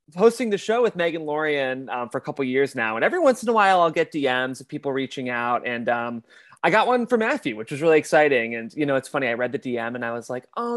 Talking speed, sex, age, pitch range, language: 285 wpm, male, 30-49, 125-160 Hz, English